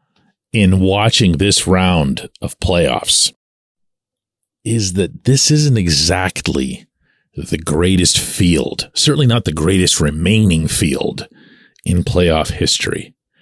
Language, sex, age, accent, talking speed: English, male, 50-69, American, 105 wpm